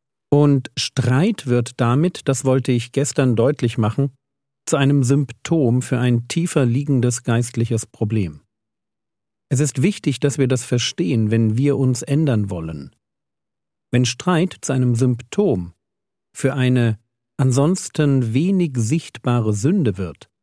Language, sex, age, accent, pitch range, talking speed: German, male, 50-69, German, 120-150 Hz, 125 wpm